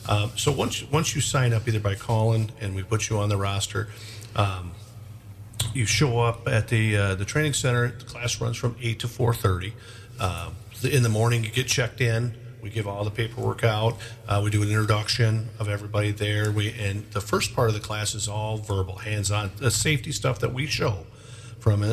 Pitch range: 100-115 Hz